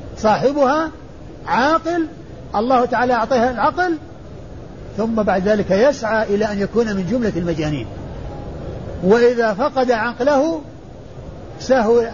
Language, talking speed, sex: Arabic, 100 wpm, male